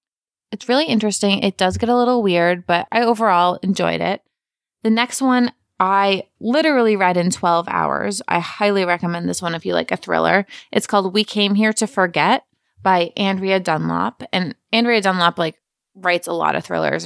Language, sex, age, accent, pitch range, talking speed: English, female, 20-39, American, 175-205 Hz, 185 wpm